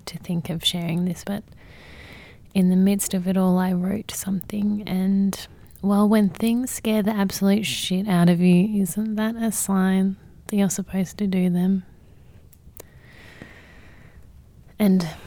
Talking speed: 145 wpm